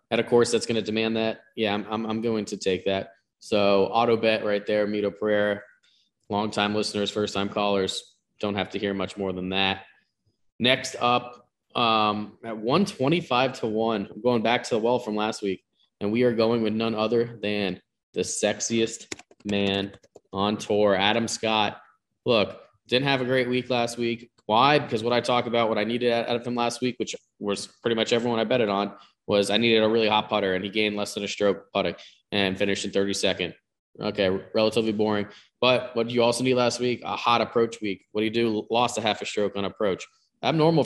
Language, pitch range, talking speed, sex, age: English, 105-120 Hz, 210 wpm, male, 20-39